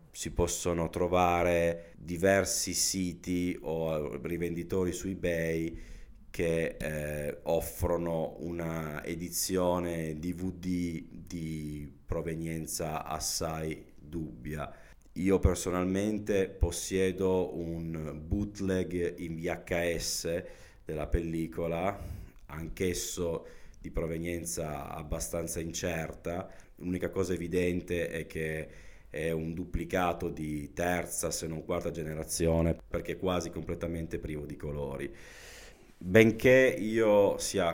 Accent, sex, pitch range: native, male, 80-90 Hz